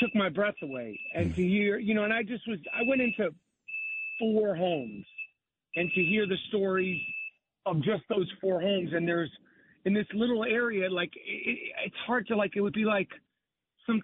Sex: male